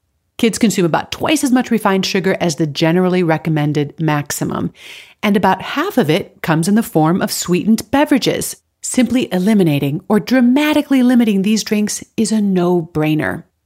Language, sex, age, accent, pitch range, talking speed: English, female, 40-59, American, 175-240 Hz, 155 wpm